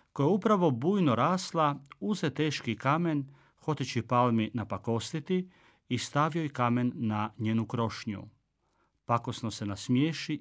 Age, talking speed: 40-59, 115 wpm